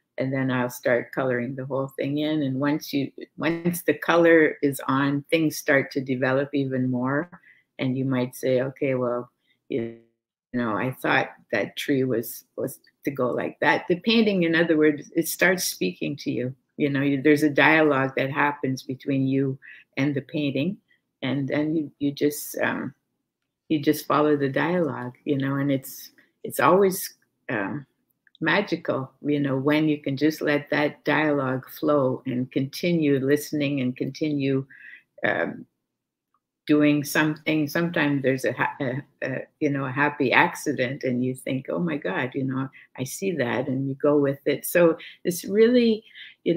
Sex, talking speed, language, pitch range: female, 170 wpm, English, 135-155 Hz